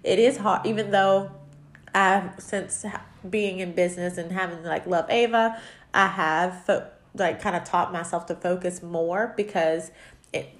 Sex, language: female, English